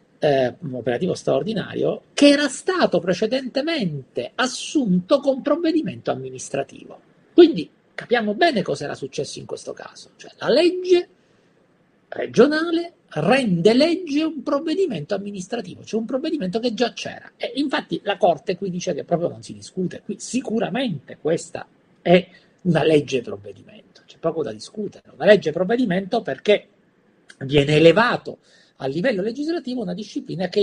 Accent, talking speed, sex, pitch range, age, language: native, 135 wpm, male, 165-265 Hz, 50-69, Italian